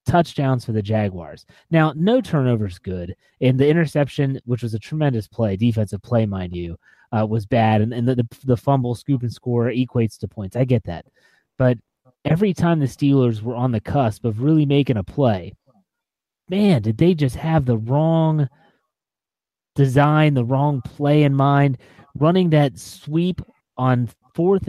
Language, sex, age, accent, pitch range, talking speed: English, male, 30-49, American, 115-150 Hz, 170 wpm